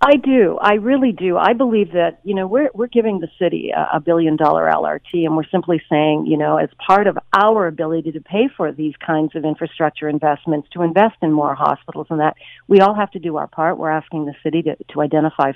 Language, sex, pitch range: English, female, 155-200 Hz